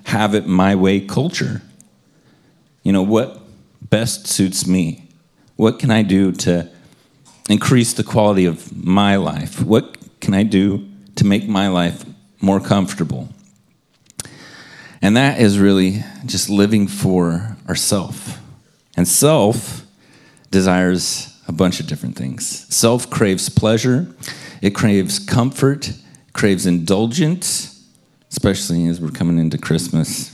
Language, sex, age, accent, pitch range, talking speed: English, male, 40-59, American, 95-120 Hz, 115 wpm